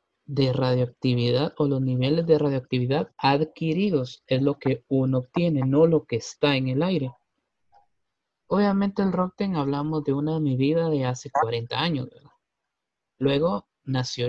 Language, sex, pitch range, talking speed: Spanish, male, 125-155 Hz, 140 wpm